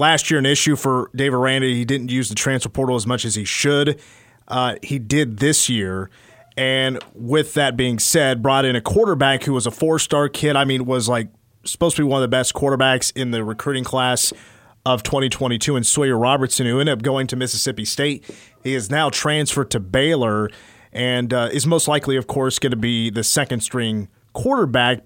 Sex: male